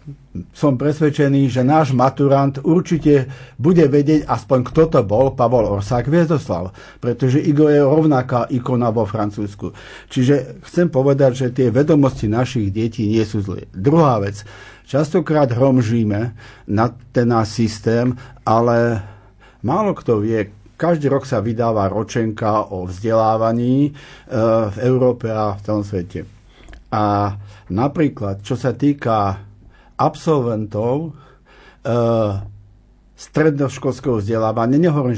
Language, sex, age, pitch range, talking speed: Slovak, male, 50-69, 105-140 Hz, 115 wpm